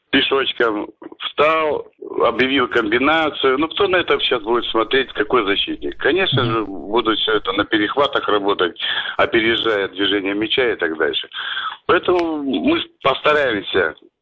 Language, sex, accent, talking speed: Russian, male, native, 125 wpm